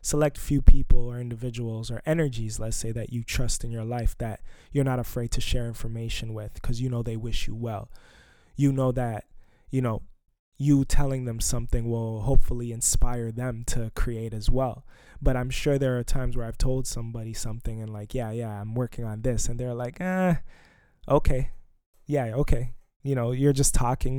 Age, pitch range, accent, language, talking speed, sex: 20-39, 115-130 Hz, American, English, 195 wpm, male